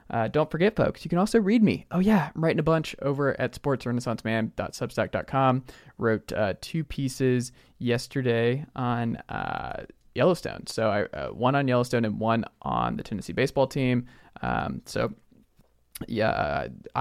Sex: male